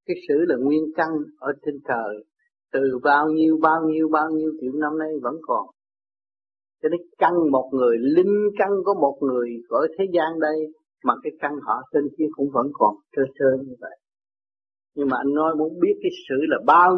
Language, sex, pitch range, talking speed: Vietnamese, male, 130-185 Hz, 200 wpm